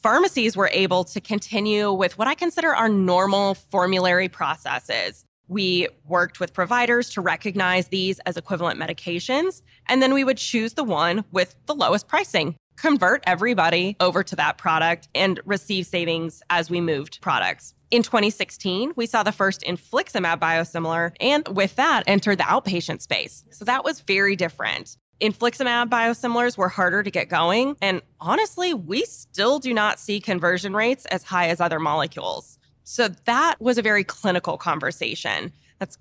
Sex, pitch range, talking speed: female, 180-235 Hz, 160 wpm